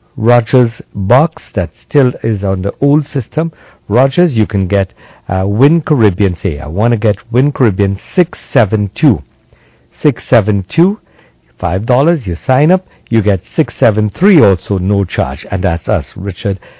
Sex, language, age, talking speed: male, English, 60-79, 140 wpm